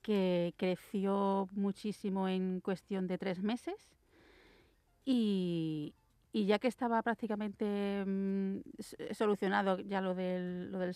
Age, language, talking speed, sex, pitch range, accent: 40-59, Spanish, 115 wpm, female, 180-215 Hz, Spanish